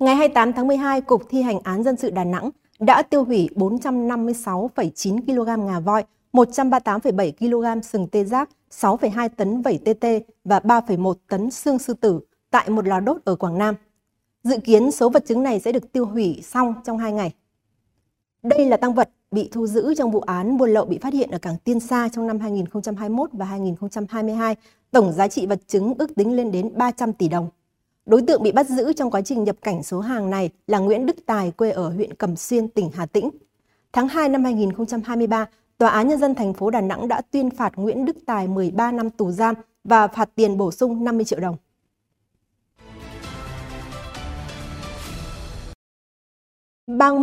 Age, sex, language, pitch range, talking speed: 20-39, female, Vietnamese, 190-245 Hz, 185 wpm